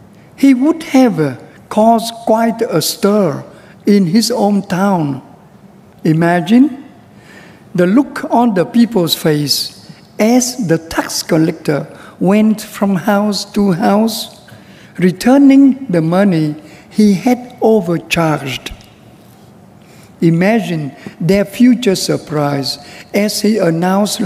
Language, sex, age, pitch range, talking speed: Vietnamese, male, 60-79, 180-235 Hz, 100 wpm